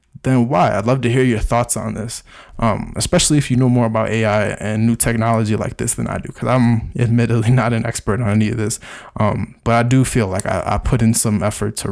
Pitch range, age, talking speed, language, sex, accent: 115-130 Hz, 20-39, 245 wpm, English, male, American